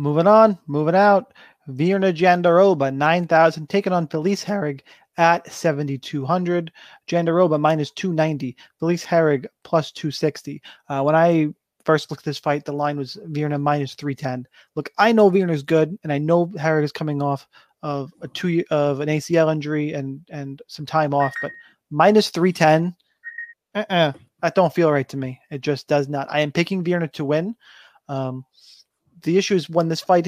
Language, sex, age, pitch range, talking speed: English, male, 30-49, 145-180 Hz, 185 wpm